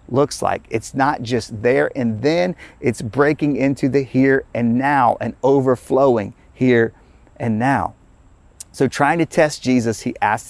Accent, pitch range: American, 105-135 Hz